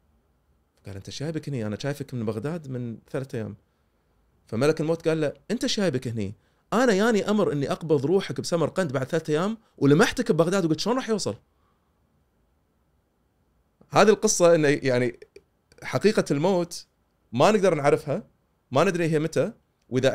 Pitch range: 105-165 Hz